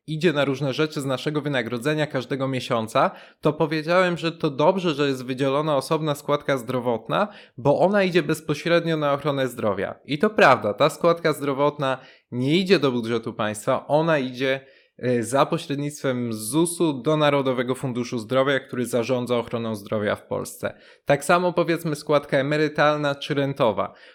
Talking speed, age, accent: 150 wpm, 20-39, native